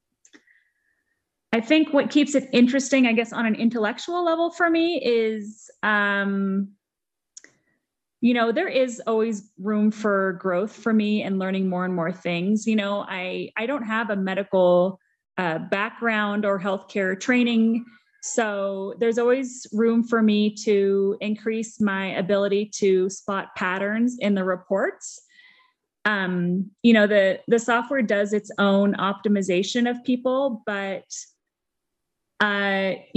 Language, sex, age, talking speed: English, female, 30-49, 135 wpm